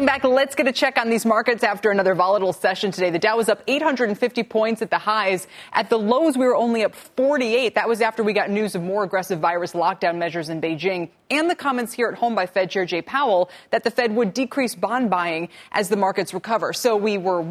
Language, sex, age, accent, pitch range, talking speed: English, female, 20-39, American, 180-235 Hz, 235 wpm